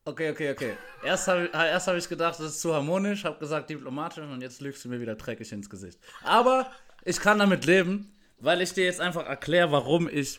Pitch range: 130-175 Hz